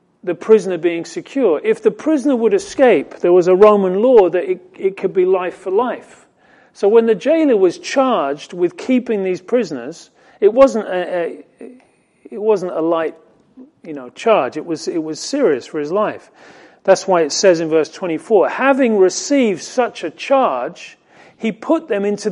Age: 40-59